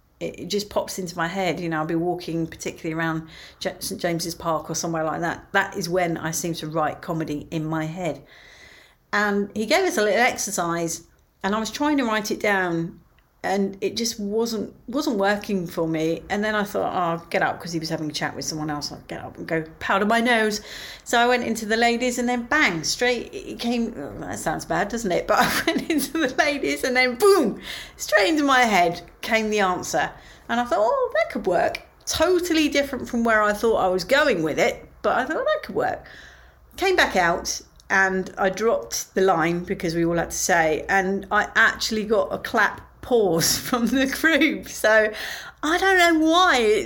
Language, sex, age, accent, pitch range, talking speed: English, female, 40-59, British, 180-245 Hz, 215 wpm